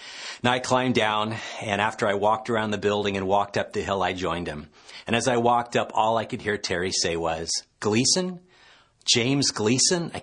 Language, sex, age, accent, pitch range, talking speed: English, male, 40-59, American, 95-120 Hz, 205 wpm